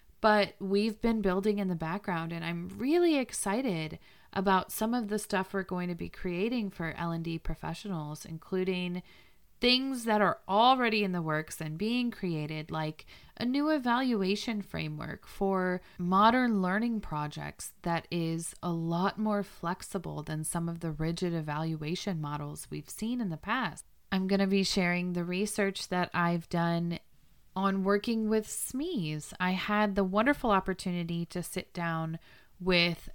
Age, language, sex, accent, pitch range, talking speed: 30-49, English, female, American, 165-205 Hz, 155 wpm